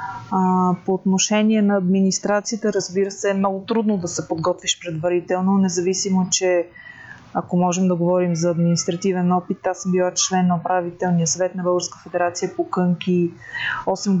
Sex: female